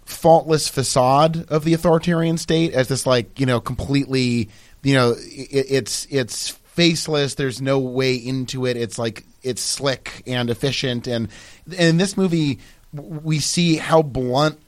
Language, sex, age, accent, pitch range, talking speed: English, male, 30-49, American, 120-155 Hz, 150 wpm